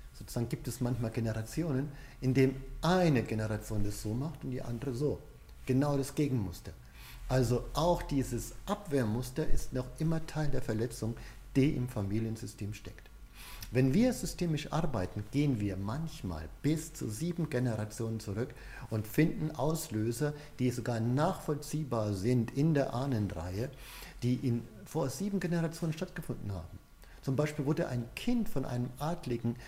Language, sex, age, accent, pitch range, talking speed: German, male, 50-69, German, 110-150 Hz, 140 wpm